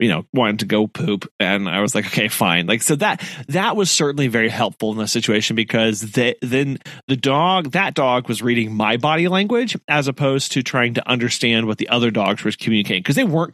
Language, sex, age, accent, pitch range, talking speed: English, male, 30-49, American, 110-145 Hz, 220 wpm